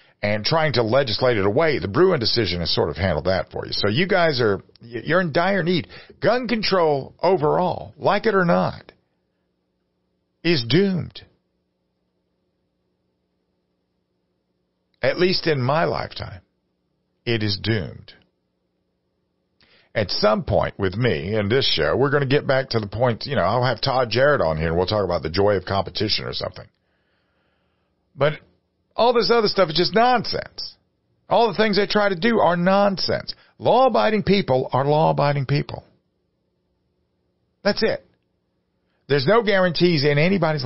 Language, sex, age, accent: English, male, 50-69, American